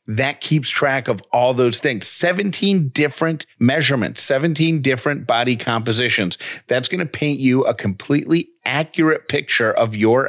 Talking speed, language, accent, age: 145 wpm, English, American, 40-59